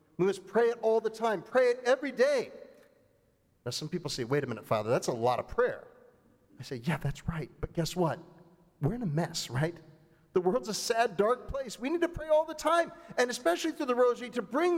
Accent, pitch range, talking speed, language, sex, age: American, 160-255 Hz, 230 wpm, English, male, 40-59